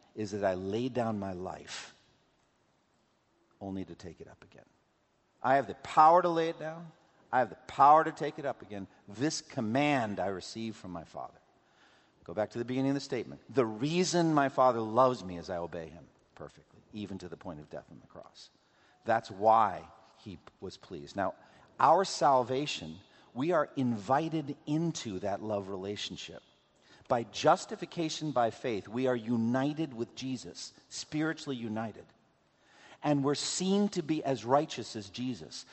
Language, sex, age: English, male, 50-69